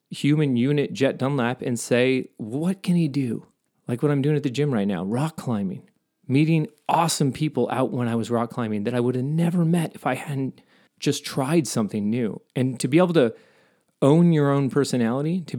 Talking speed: 205 wpm